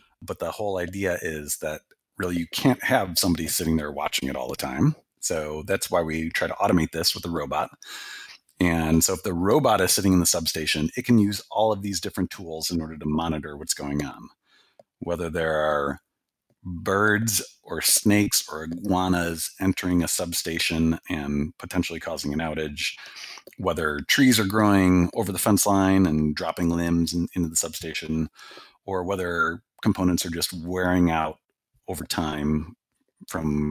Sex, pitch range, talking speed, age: male, 80-100 Hz, 170 wpm, 30-49